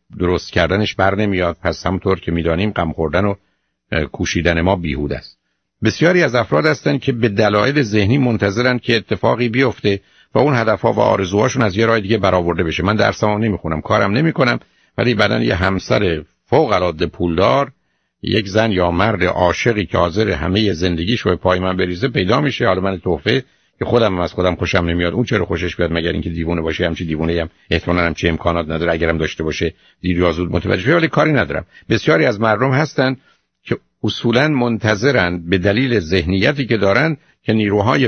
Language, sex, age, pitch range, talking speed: Persian, male, 50-69, 85-110 Hz, 190 wpm